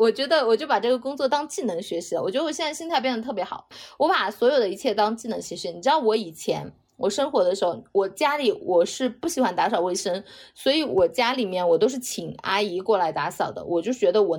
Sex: female